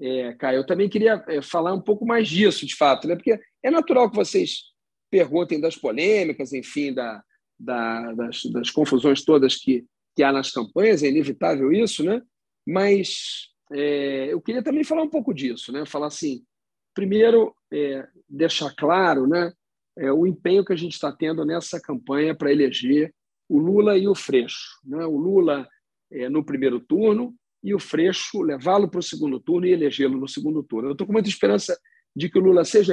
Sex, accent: male, Brazilian